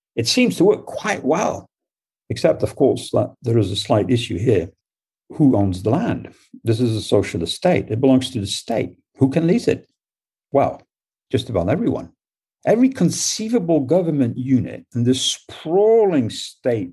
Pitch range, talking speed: 100-135 Hz, 165 wpm